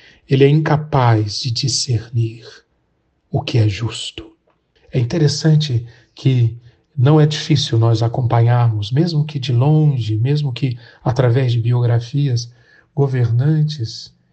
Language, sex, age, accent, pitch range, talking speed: Portuguese, male, 40-59, Brazilian, 120-155 Hz, 115 wpm